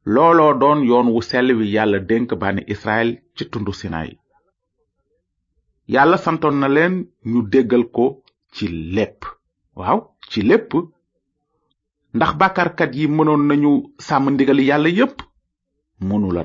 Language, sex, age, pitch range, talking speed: French, male, 30-49, 105-155 Hz, 135 wpm